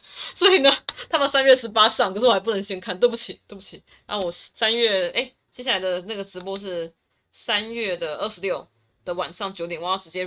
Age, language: 20-39, Chinese